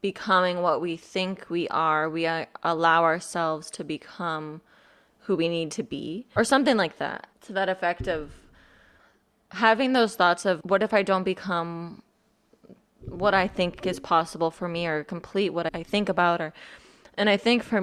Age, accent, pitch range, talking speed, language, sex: 20-39, American, 165-195 Hz, 170 wpm, English, female